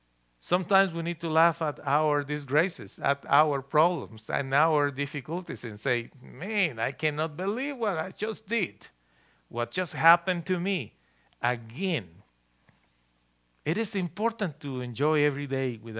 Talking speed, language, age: 145 wpm, English, 50-69